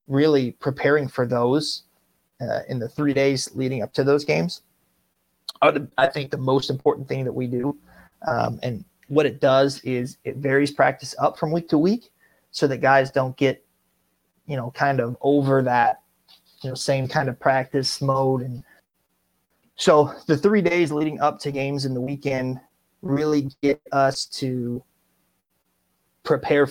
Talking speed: 160 wpm